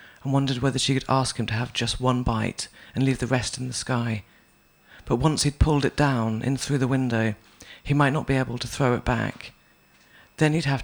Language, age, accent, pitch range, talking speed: English, 40-59, British, 110-130 Hz, 225 wpm